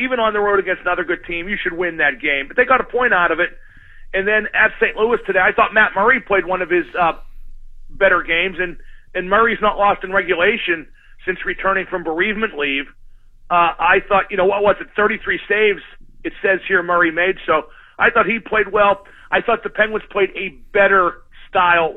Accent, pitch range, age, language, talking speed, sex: American, 180-225 Hz, 40-59, English, 215 wpm, male